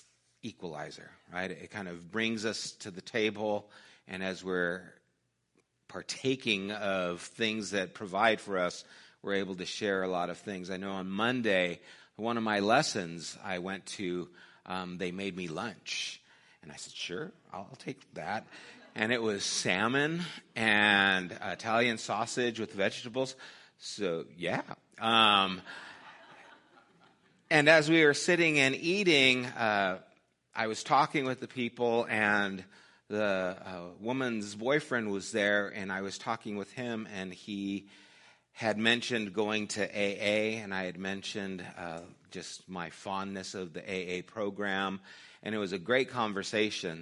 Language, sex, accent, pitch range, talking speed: English, male, American, 95-110 Hz, 145 wpm